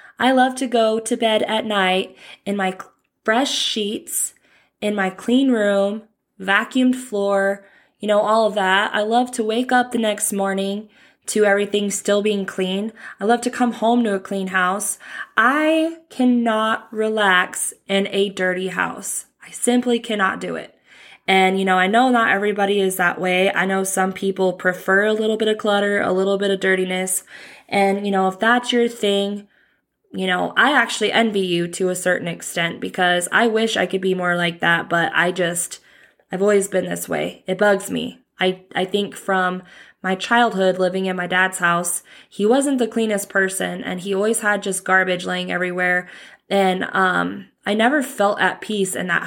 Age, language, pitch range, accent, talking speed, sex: 20-39, English, 185-225 Hz, American, 185 wpm, female